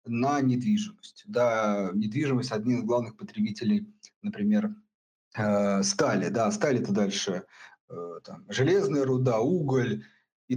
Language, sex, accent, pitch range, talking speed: Russian, male, native, 130-210 Hz, 115 wpm